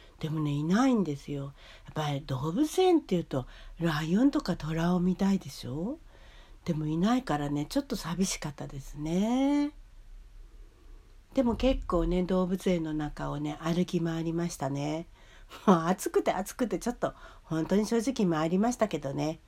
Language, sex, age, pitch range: Japanese, female, 60-79, 150-220 Hz